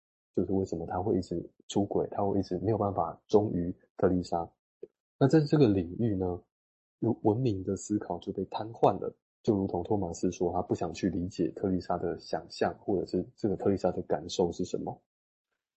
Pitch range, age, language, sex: 90-110 Hz, 20-39, Chinese, male